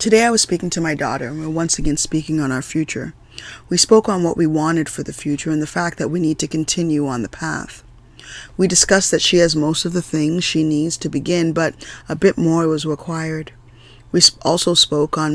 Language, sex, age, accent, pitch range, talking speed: English, female, 20-39, American, 150-180 Hz, 225 wpm